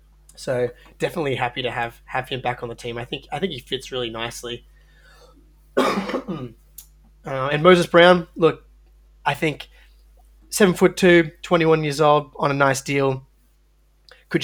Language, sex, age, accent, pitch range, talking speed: English, male, 20-39, Australian, 125-145 Hz, 160 wpm